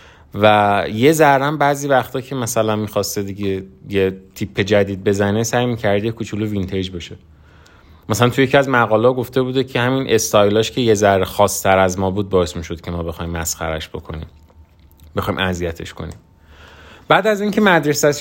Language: Persian